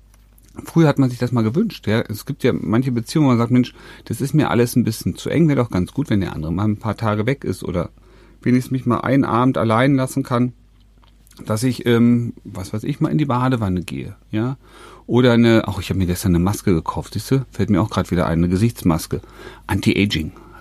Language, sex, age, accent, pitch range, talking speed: German, male, 40-59, German, 95-125 Hz, 235 wpm